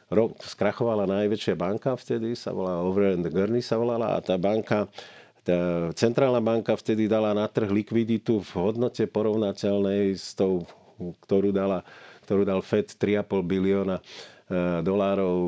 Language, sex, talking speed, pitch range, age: Slovak, male, 130 wpm, 90-105 Hz, 40-59